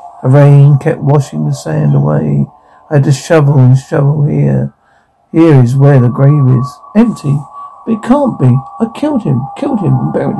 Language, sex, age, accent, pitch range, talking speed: English, male, 60-79, British, 130-170 Hz, 185 wpm